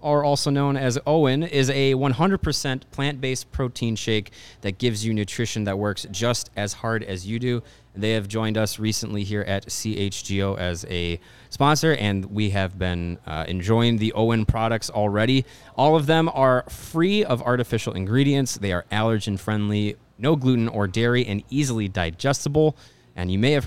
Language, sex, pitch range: English, male, 100-130 Hz